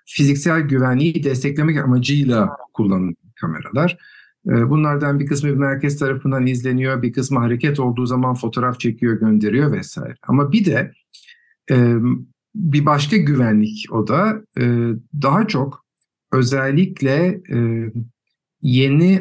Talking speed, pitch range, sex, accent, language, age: 105 wpm, 115-145 Hz, male, native, Turkish, 50-69